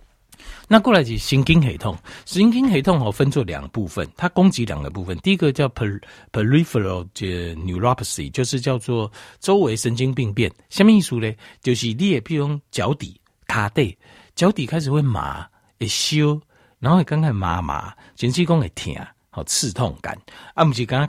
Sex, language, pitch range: male, Chinese, 95-150 Hz